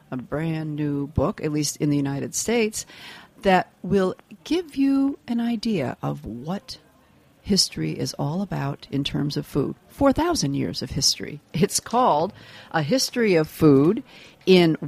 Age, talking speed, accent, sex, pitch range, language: 50-69, 150 wpm, American, female, 145-205 Hz, English